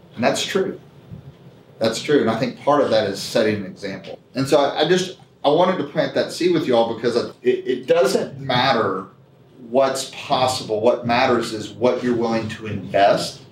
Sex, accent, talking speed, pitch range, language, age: male, American, 195 wpm, 120-145 Hz, English, 40-59